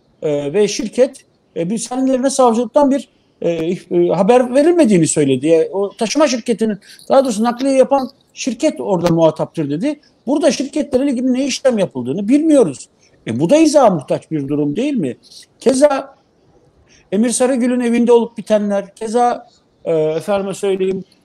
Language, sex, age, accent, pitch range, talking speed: Turkish, male, 50-69, native, 190-270 Hz, 145 wpm